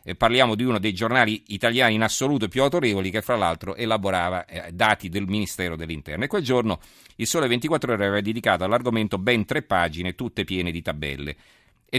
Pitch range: 90-125 Hz